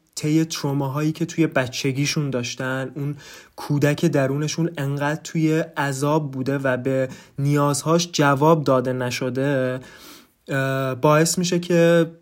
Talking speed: 110 wpm